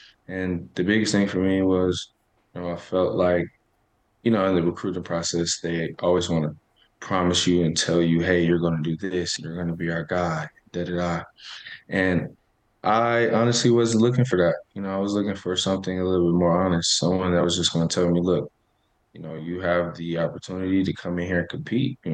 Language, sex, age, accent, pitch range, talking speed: English, male, 20-39, American, 85-100 Hz, 220 wpm